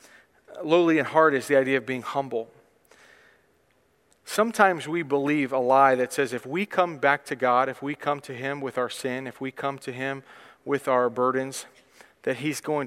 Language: English